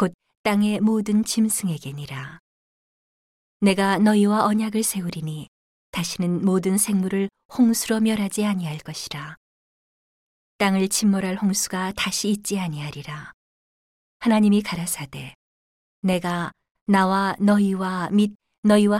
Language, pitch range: Korean, 170-205 Hz